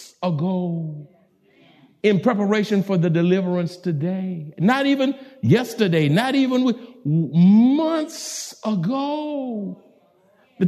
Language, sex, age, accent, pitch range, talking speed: English, male, 60-79, American, 165-230 Hz, 90 wpm